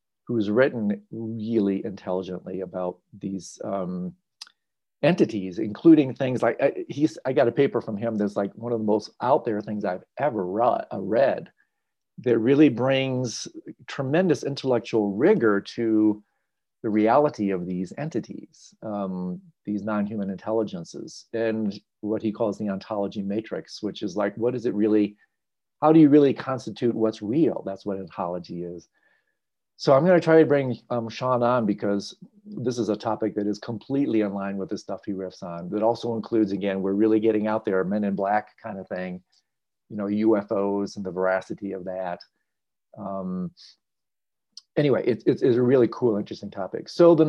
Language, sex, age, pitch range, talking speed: English, male, 40-59, 100-130 Hz, 170 wpm